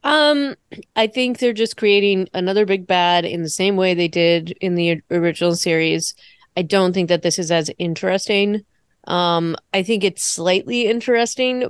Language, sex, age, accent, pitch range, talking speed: English, female, 20-39, American, 170-190 Hz, 170 wpm